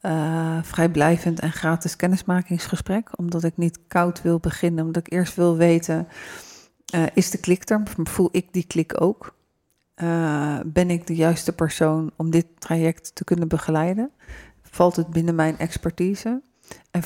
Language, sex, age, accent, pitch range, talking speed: Dutch, female, 40-59, Dutch, 160-175 Hz, 155 wpm